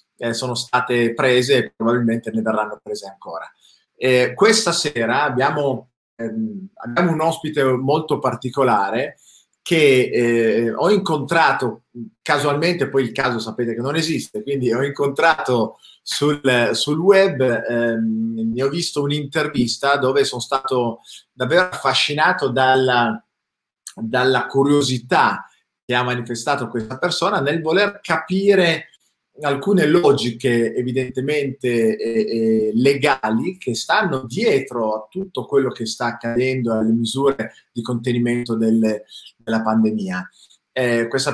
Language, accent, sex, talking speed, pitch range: Italian, native, male, 120 wpm, 120-145 Hz